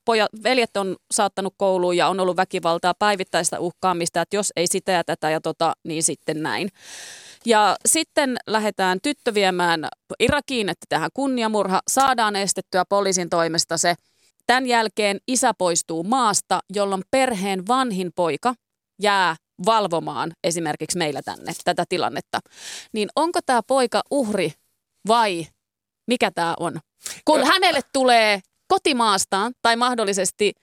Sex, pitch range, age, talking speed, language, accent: female, 175-235 Hz, 30-49, 130 wpm, Finnish, native